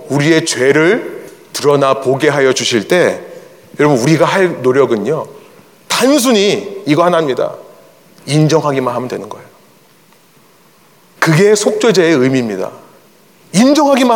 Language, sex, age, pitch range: Korean, male, 30-49, 160-260 Hz